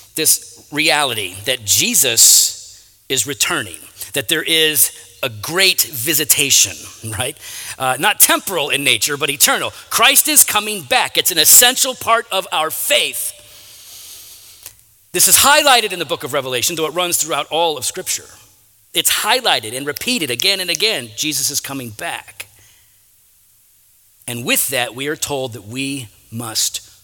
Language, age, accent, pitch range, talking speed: English, 40-59, American, 105-150 Hz, 145 wpm